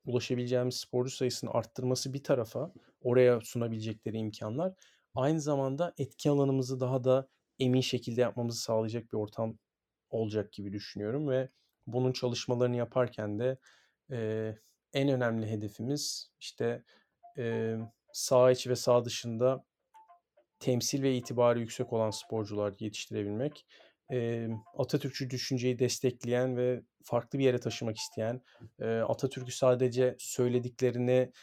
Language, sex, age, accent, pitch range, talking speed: Turkish, male, 40-59, native, 115-135 Hz, 115 wpm